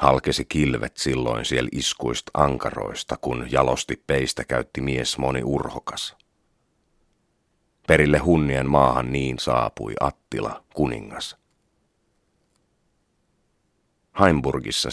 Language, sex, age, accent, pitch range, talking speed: Finnish, male, 40-59, native, 65-75 Hz, 85 wpm